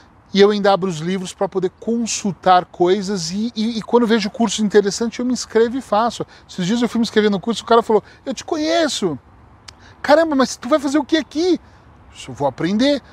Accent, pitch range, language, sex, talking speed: Brazilian, 150-215 Hz, Portuguese, male, 220 wpm